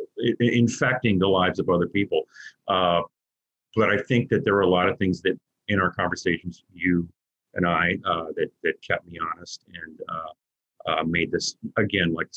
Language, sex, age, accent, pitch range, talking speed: English, male, 40-59, American, 90-120 Hz, 185 wpm